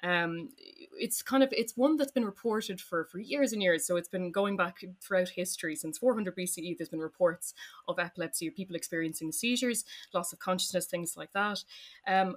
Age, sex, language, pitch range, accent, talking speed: 20-39, female, English, 175-215 Hz, Irish, 195 wpm